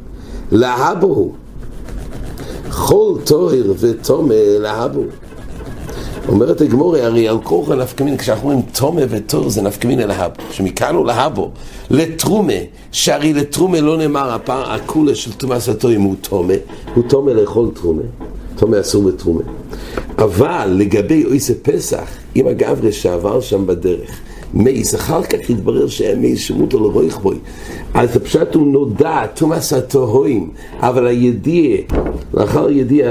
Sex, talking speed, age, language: male, 105 wpm, 60-79, English